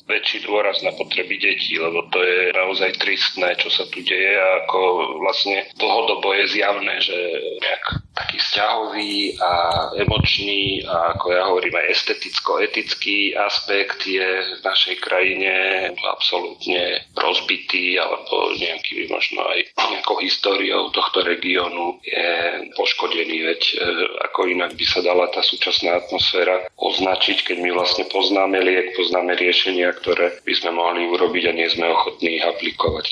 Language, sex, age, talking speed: Slovak, male, 40-59, 140 wpm